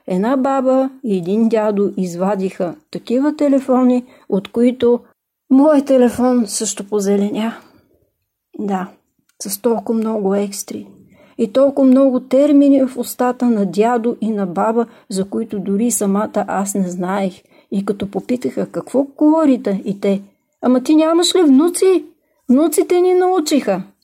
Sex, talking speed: female, 130 wpm